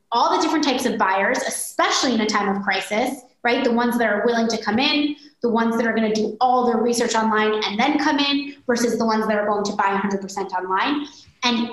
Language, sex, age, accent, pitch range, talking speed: English, female, 20-39, American, 210-260 Hz, 235 wpm